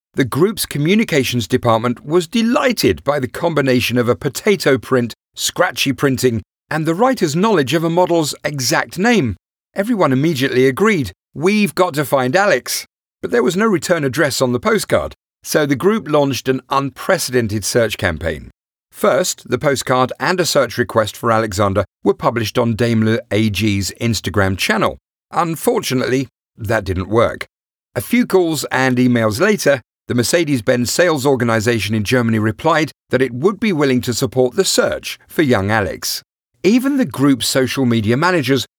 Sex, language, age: male, English, 40-59